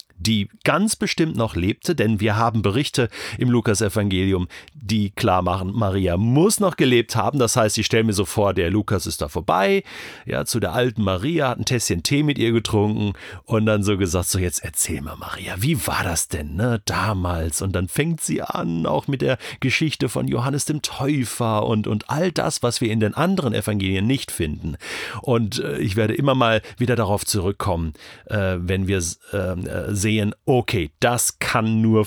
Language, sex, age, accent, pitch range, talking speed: German, male, 40-59, German, 100-135 Hz, 190 wpm